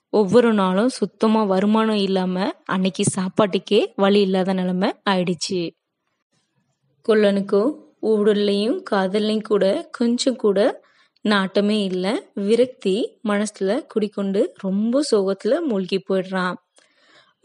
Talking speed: 90 wpm